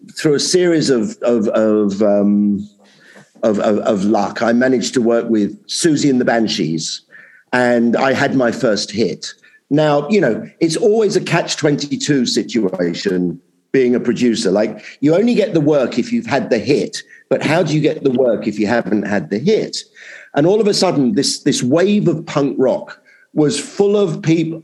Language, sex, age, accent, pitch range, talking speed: English, male, 50-69, British, 120-185 Hz, 190 wpm